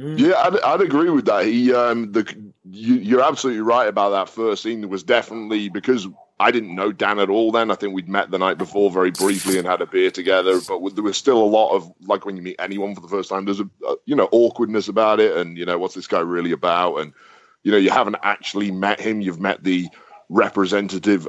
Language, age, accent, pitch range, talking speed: English, 30-49, British, 90-115 Hz, 250 wpm